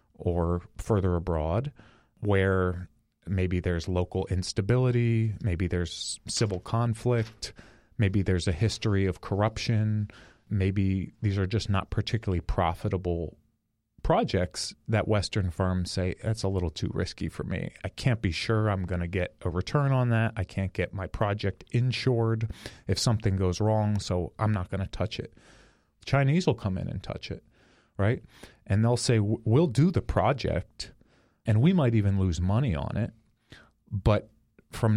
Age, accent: 30-49, American